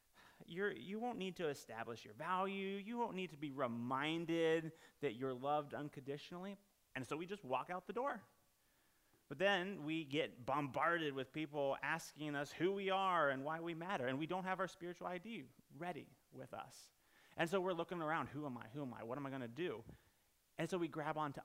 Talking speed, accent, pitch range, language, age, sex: 200 wpm, American, 130-180 Hz, English, 30-49, male